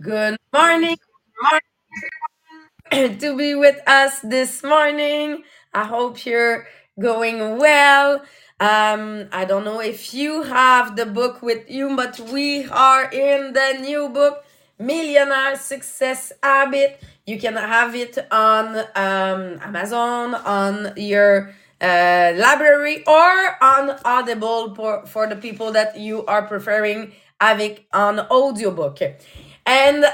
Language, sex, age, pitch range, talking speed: English, female, 20-39, 215-280 Hz, 120 wpm